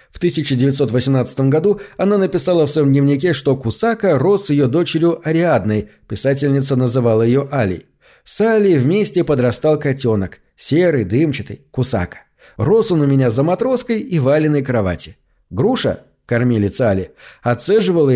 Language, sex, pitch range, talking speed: Russian, male, 120-160 Hz, 130 wpm